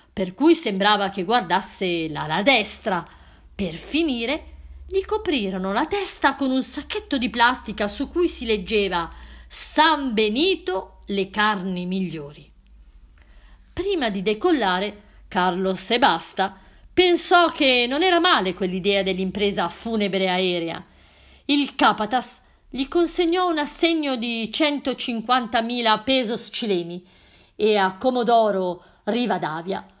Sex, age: female, 50-69